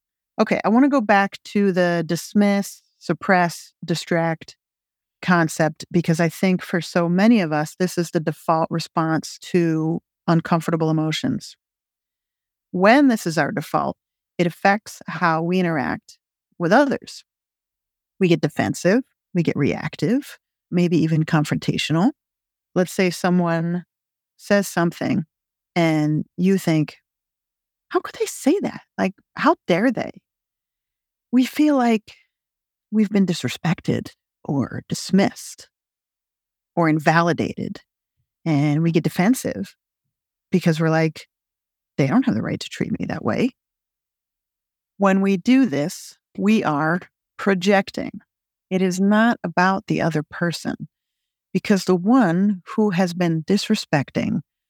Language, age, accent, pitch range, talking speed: English, 40-59, American, 165-205 Hz, 125 wpm